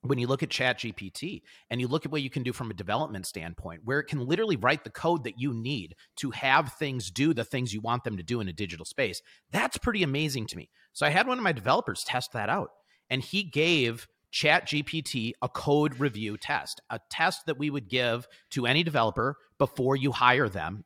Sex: male